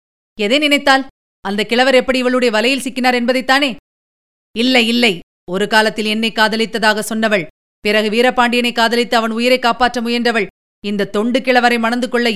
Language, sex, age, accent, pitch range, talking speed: Tamil, female, 30-49, native, 215-255 Hz, 135 wpm